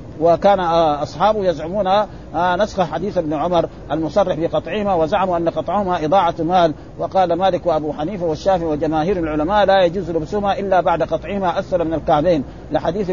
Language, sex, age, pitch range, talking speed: Arabic, male, 50-69, 160-195 Hz, 140 wpm